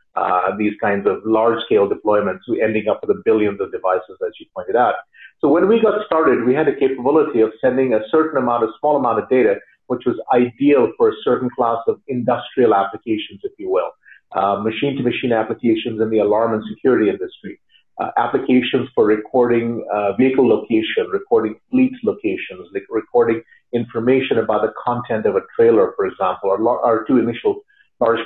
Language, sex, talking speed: English, male, 185 wpm